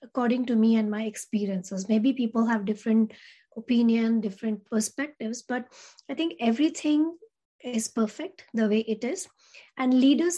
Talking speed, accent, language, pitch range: 145 wpm, Indian, English, 215-255 Hz